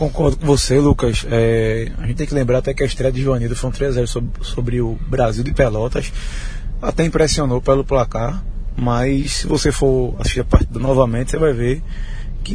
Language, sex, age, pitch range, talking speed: Portuguese, male, 20-39, 115-145 Hz, 200 wpm